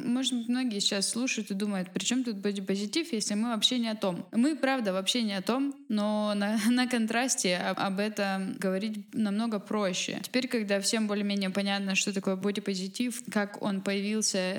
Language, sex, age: Russian, female, 20-39